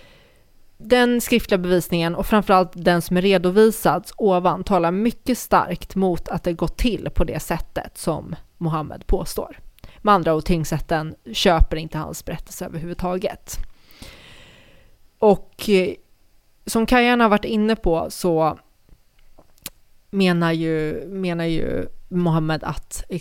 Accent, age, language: native, 20-39, Swedish